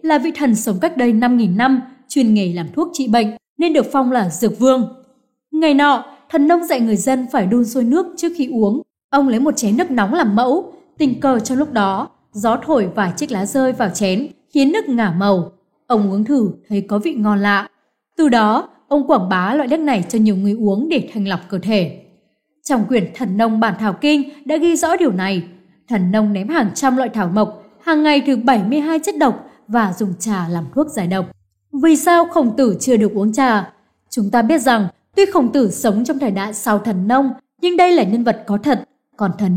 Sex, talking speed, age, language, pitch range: female, 225 wpm, 20-39, Vietnamese, 210-290 Hz